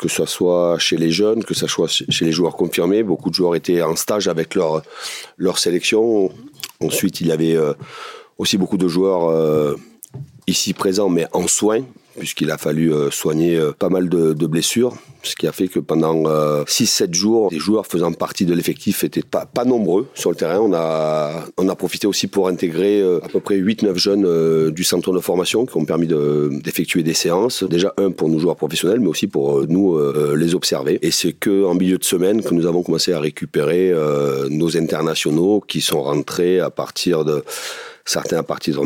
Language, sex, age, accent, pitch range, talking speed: French, male, 40-59, French, 80-90 Hz, 190 wpm